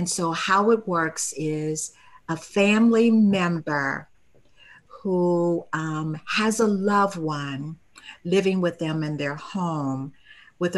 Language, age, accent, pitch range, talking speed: English, 50-69, American, 150-185 Hz, 125 wpm